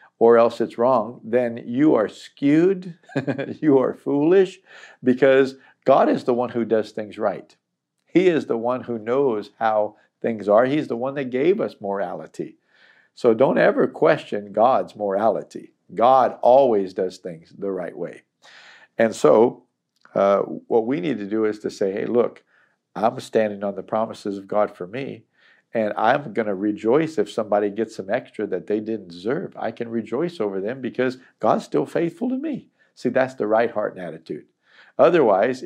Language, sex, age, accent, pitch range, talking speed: English, male, 50-69, American, 105-130 Hz, 175 wpm